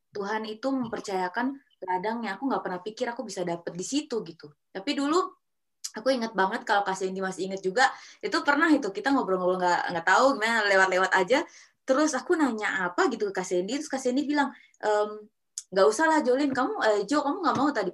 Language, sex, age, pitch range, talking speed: Indonesian, female, 20-39, 185-275 Hz, 185 wpm